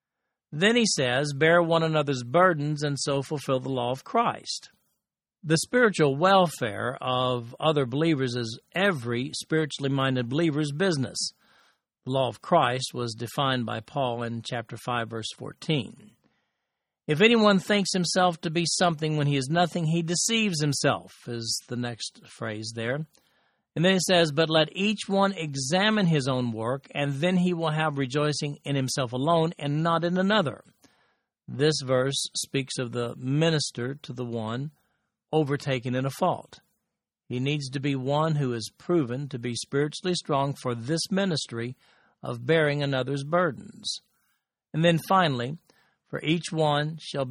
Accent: American